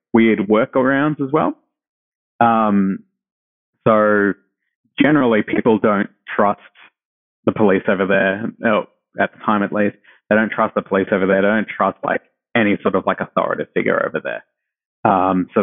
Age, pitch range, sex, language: 20-39, 105-125 Hz, male, English